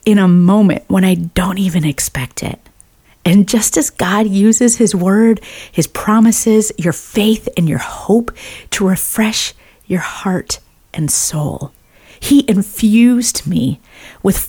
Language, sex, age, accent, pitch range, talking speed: English, female, 40-59, American, 170-235 Hz, 135 wpm